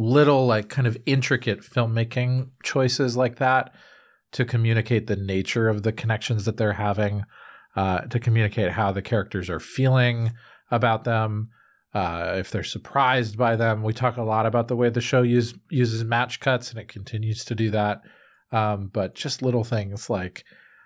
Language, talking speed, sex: English, 170 wpm, male